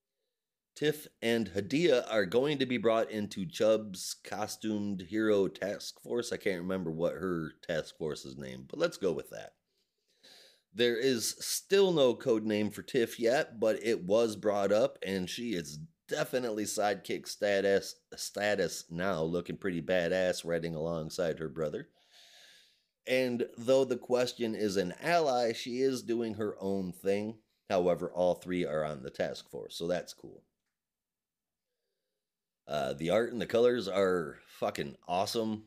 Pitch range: 90-120 Hz